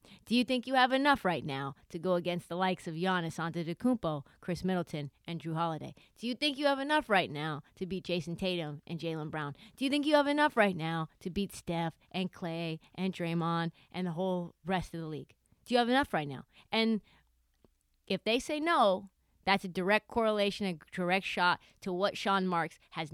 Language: English